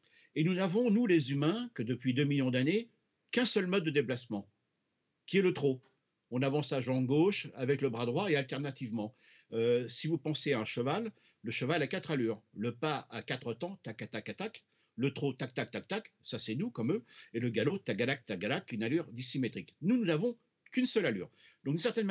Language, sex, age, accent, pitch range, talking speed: French, male, 60-79, French, 125-170 Hz, 210 wpm